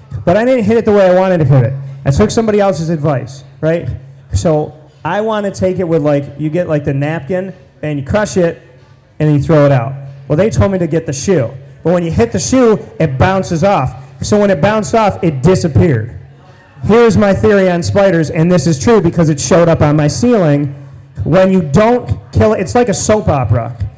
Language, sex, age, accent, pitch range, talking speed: English, male, 30-49, American, 140-195 Hz, 225 wpm